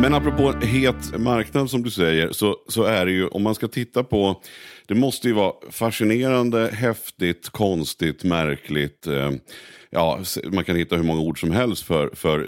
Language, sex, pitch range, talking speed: Swedish, male, 80-110 Hz, 175 wpm